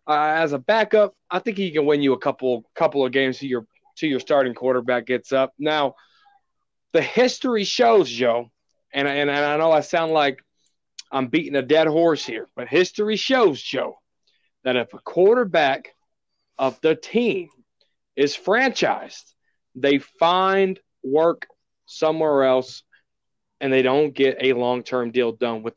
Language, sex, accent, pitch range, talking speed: English, male, American, 130-190 Hz, 160 wpm